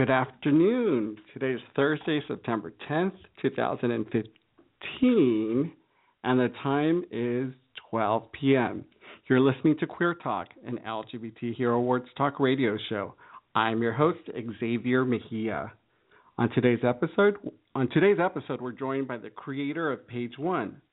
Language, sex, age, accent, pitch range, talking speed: English, male, 40-59, American, 115-145 Hz, 130 wpm